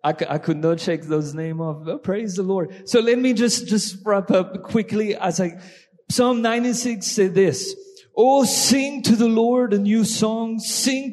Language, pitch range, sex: English, 190-225 Hz, male